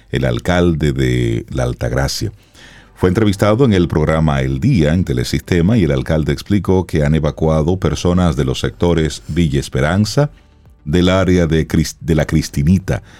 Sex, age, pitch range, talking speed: male, 40-59, 80-100 Hz, 150 wpm